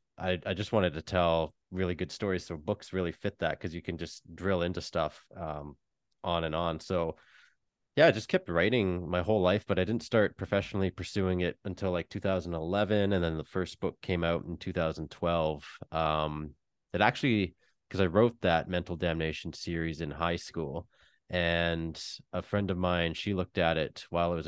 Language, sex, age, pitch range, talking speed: English, male, 30-49, 80-100 Hz, 190 wpm